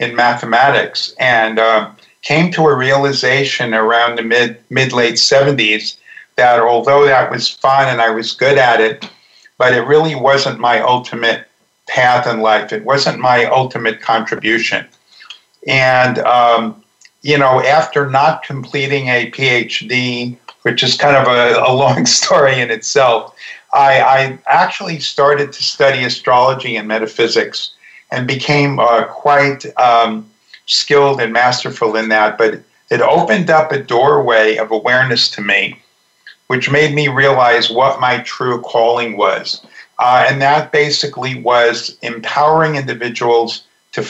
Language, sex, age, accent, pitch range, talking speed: English, male, 50-69, American, 120-140 Hz, 140 wpm